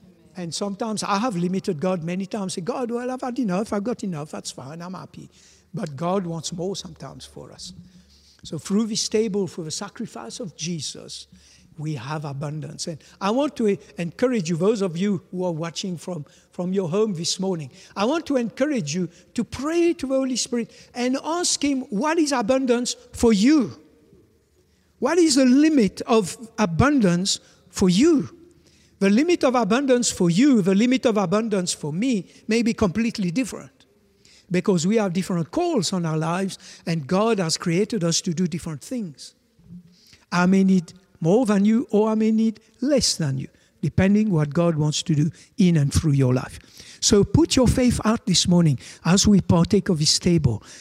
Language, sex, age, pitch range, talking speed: English, male, 60-79, 170-230 Hz, 180 wpm